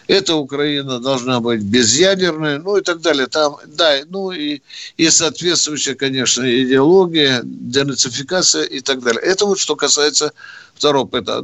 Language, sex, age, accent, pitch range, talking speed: Russian, male, 60-79, native, 130-170 Hz, 135 wpm